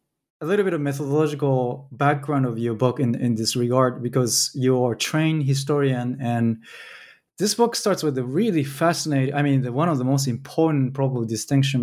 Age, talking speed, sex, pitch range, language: 20-39, 190 wpm, male, 125-150 Hz, English